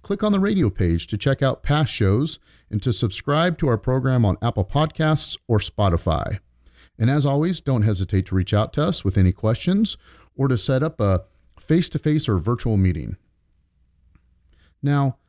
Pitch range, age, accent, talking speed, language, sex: 90-135 Hz, 40-59, American, 175 wpm, English, male